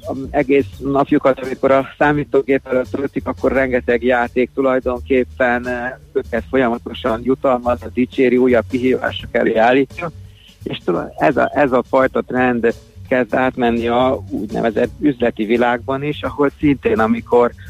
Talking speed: 120 wpm